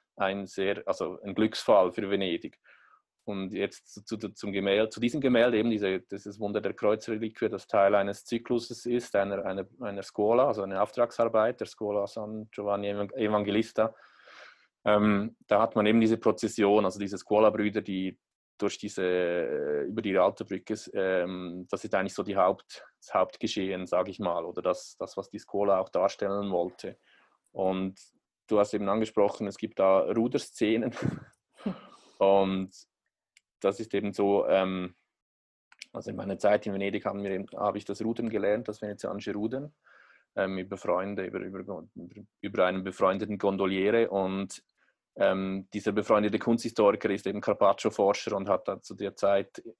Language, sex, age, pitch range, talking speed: German, male, 20-39, 95-110 Hz, 160 wpm